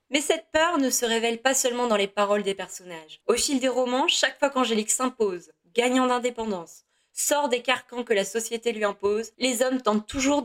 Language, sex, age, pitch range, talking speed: French, female, 20-39, 200-255 Hz, 200 wpm